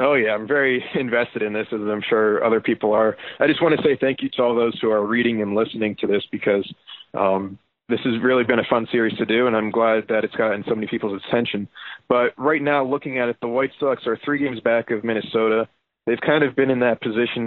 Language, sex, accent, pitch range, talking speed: English, male, American, 110-125 Hz, 250 wpm